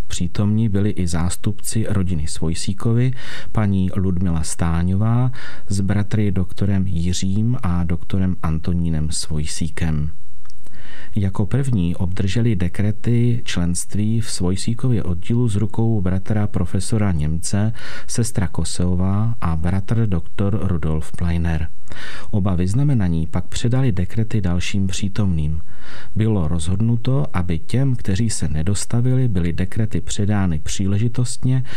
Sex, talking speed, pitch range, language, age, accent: male, 105 wpm, 90-115 Hz, Czech, 40-59, native